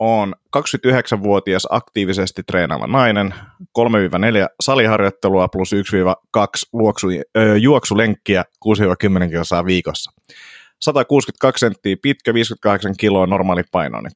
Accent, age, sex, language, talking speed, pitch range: native, 30-49, male, Finnish, 90 wpm, 90-110 Hz